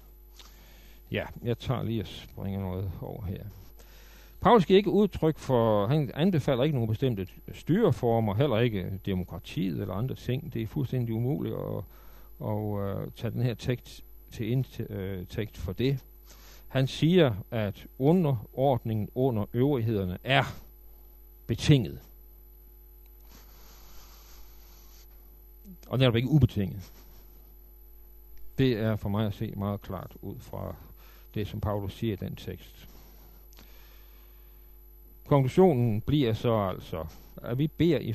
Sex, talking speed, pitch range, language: male, 125 wpm, 100-145 Hz, Danish